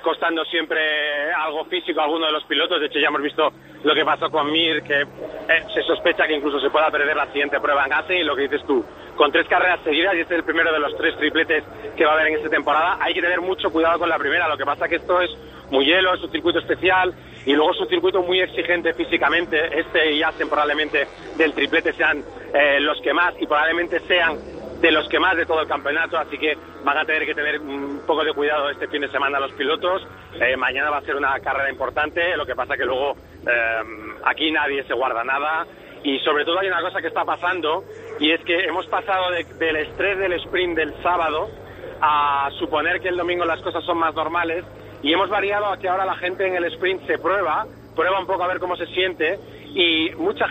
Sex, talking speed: male, 235 wpm